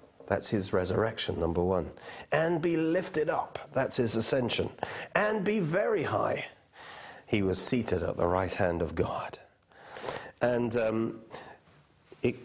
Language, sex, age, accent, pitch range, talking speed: English, male, 50-69, British, 105-140 Hz, 135 wpm